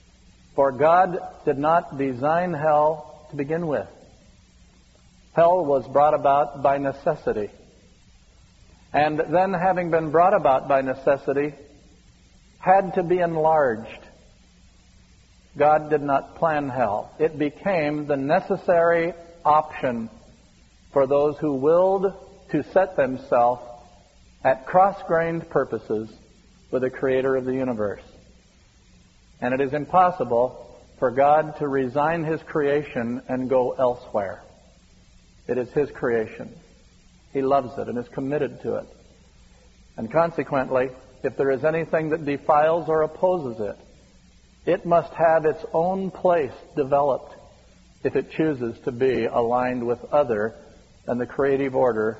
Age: 50-69